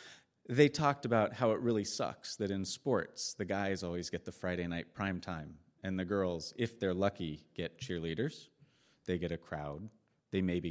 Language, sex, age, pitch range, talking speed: English, male, 30-49, 85-115 Hz, 185 wpm